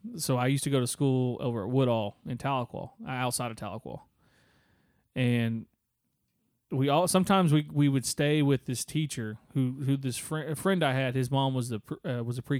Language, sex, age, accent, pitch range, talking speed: English, male, 30-49, American, 120-140 Hz, 195 wpm